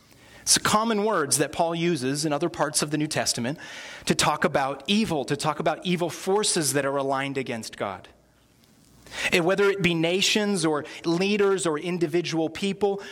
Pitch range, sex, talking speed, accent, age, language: 125-165 Hz, male, 165 wpm, American, 30-49, English